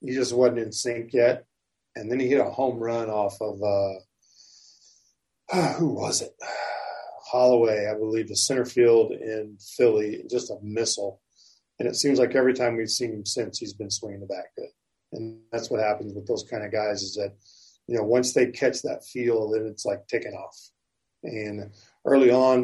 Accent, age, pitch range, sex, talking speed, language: American, 40-59, 105-120 Hz, male, 190 wpm, English